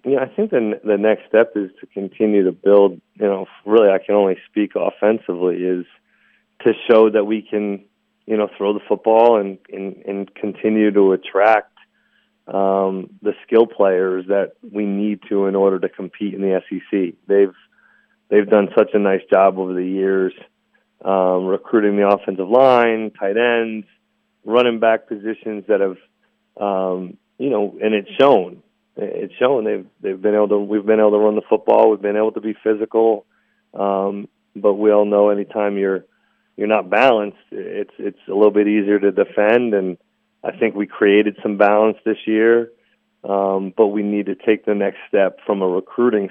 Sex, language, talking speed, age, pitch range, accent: male, English, 180 wpm, 30-49, 95-110 Hz, American